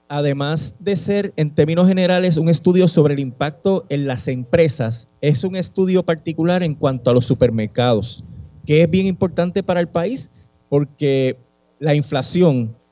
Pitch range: 125-165 Hz